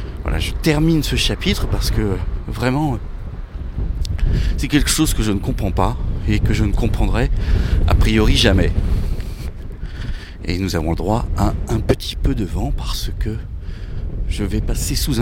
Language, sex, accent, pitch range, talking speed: French, male, French, 85-115 Hz, 160 wpm